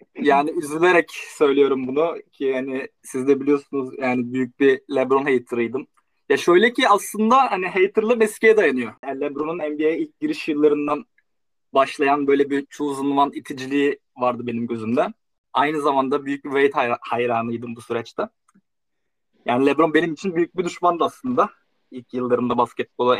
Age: 20-39